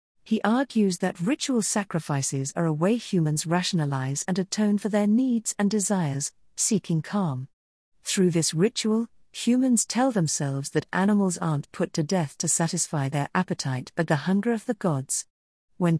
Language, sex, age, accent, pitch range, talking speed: English, female, 50-69, British, 155-220 Hz, 160 wpm